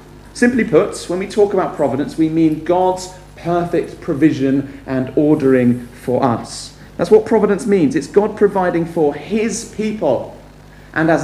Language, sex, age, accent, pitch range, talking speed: English, male, 40-59, British, 130-170 Hz, 150 wpm